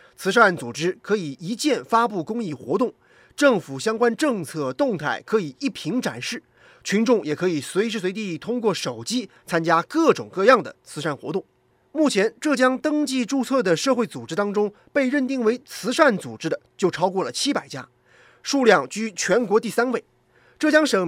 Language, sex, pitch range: Chinese, male, 175-260 Hz